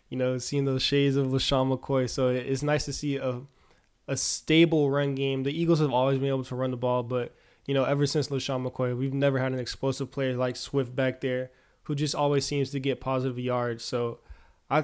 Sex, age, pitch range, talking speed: male, 20-39, 130-145 Hz, 225 wpm